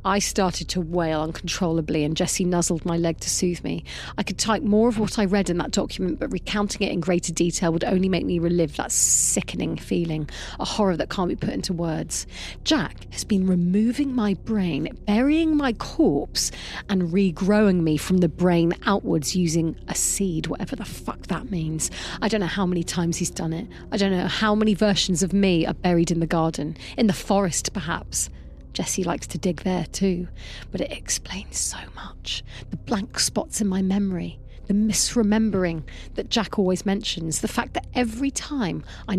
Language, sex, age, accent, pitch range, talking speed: English, female, 30-49, British, 155-200 Hz, 190 wpm